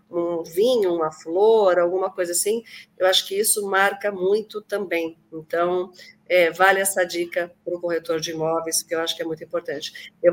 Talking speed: 185 wpm